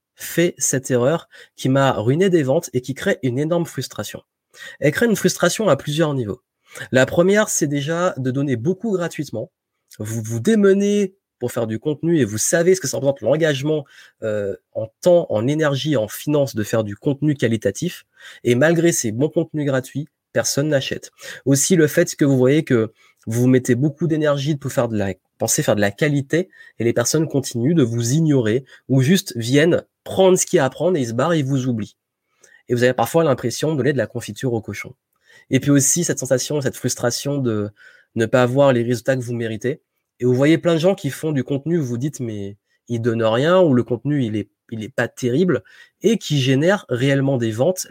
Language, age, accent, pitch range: French, 30-49, French, 120-165 Hz